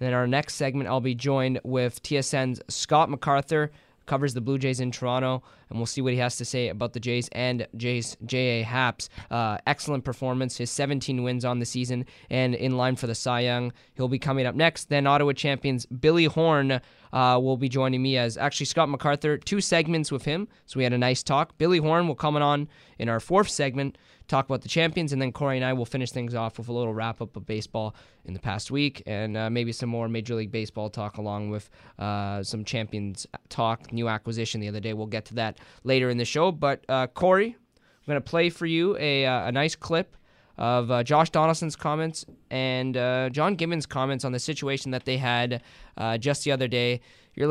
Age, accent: 20-39, American